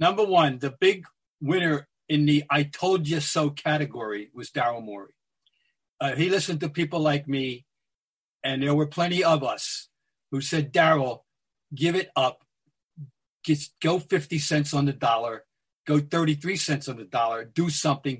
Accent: American